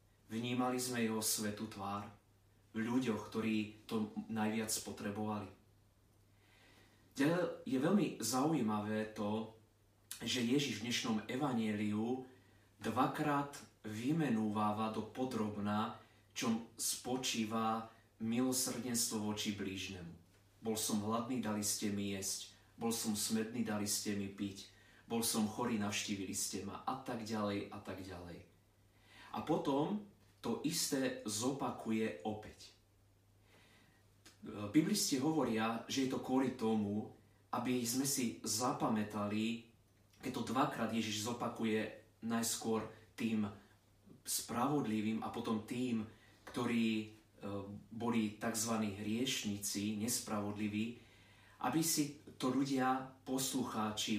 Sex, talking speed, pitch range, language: male, 105 wpm, 105-115 Hz, Slovak